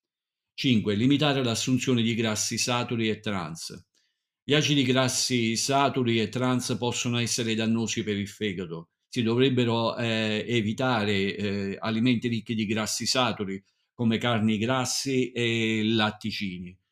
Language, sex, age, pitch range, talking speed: Italian, male, 50-69, 105-130 Hz, 125 wpm